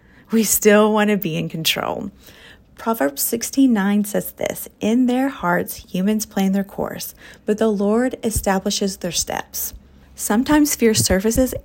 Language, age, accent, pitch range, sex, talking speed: English, 30-49, American, 195-235 Hz, female, 140 wpm